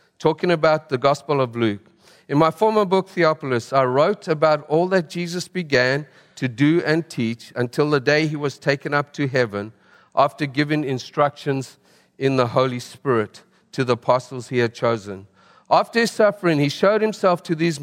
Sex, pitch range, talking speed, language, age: male, 140-195 Hz, 175 wpm, English, 50-69